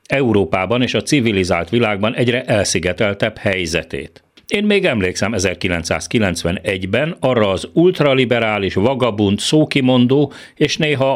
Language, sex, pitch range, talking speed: Hungarian, male, 95-130 Hz, 100 wpm